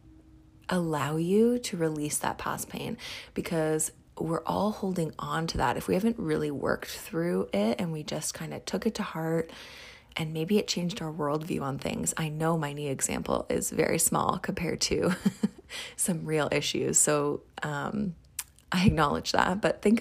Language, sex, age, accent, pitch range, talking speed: English, female, 30-49, American, 150-200 Hz, 175 wpm